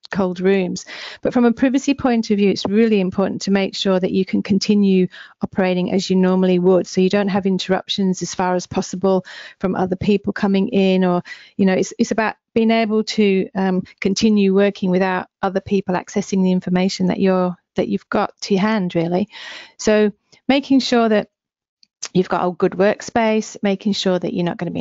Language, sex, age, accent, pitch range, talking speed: English, female, 40-59, British, 185-210 Hz, 200 wpm